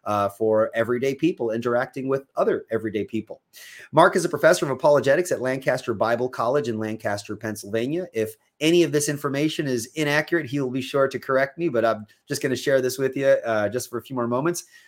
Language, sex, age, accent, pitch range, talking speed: English, male, 30-49, American, 115-155 Hz, 205 wpm